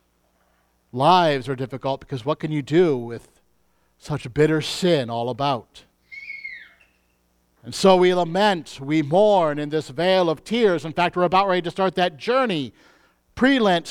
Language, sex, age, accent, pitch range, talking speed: English, male, 50-69, American, 130-210 Hz, 155 wpm